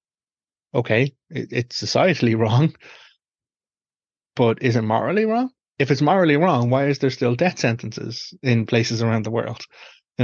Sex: male